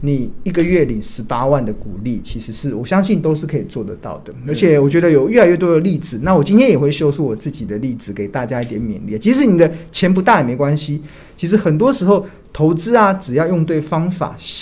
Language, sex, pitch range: Chinese, male, 120-180 Hz